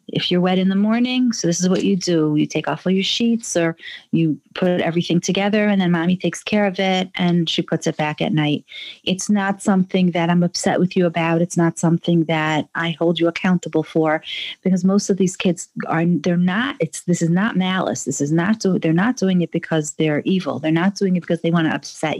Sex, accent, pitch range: female, American, 160-190 Hz